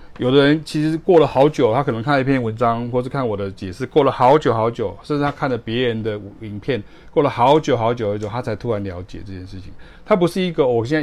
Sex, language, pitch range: male, Chinese, 105-135 Hz